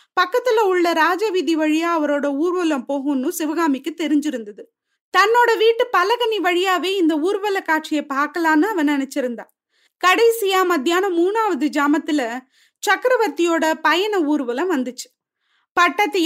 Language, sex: Tamil, female